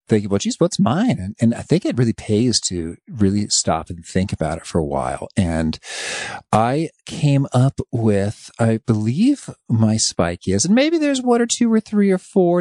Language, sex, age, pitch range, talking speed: English, male, 40-59, 95-145 Hz, 200 wpm